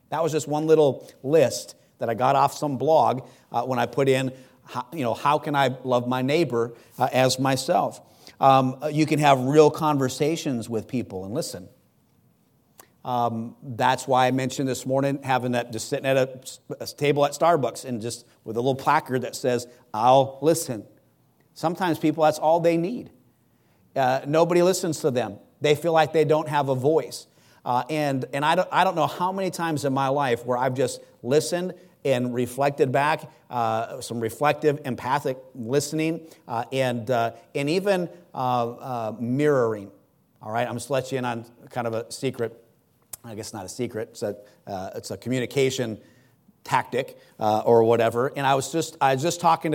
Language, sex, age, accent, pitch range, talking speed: English, male, 50-69, American, 120-150 Hz, 185 wpm